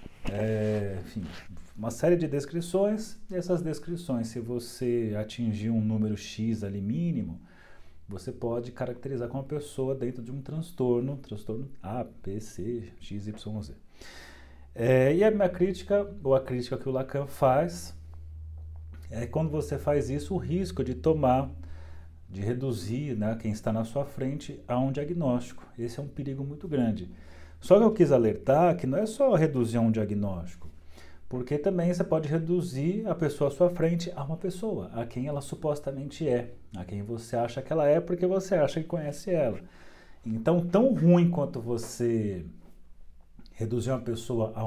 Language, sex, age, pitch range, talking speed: Portuguese, male, 40-59, 110-155 Hz, 170 wpm